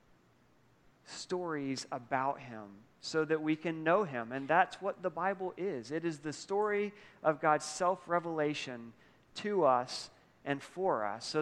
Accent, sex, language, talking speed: American, male, English, 145 wpm